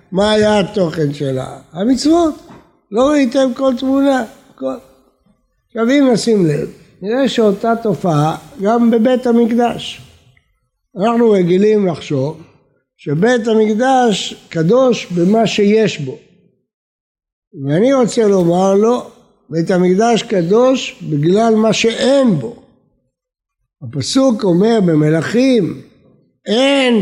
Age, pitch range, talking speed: 60-79, 175-235 Hz, 100 wpm